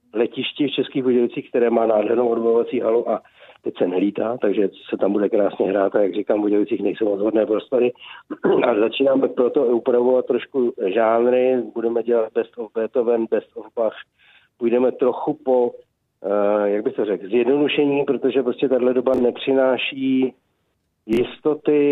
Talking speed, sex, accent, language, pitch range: 150 wpm, male, native, Czech, 115-130 Hz